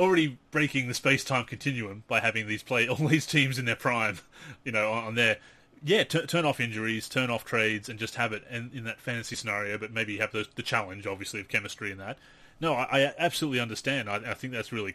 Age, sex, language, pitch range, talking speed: 30-49, male, English, 110-135 Hz, 225 wpm